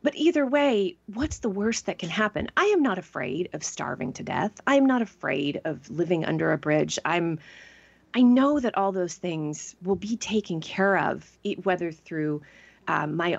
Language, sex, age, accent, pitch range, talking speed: English, female, 30-49, American, 155-230 Hz, 190 wpm